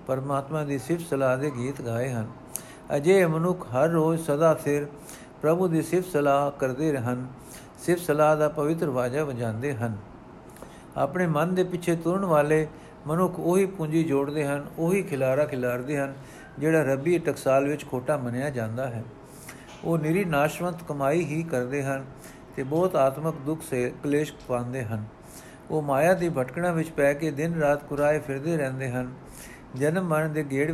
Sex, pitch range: male, 135-165 Hz